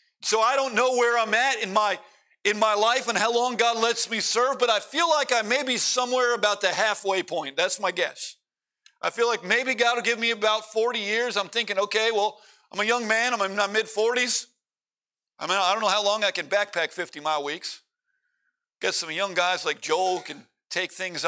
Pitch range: 185-265 Hz